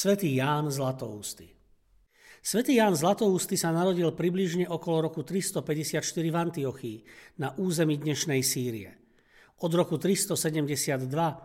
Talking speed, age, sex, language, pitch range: 110 wpm, 50-69, male, Slovak, 140-175 Hz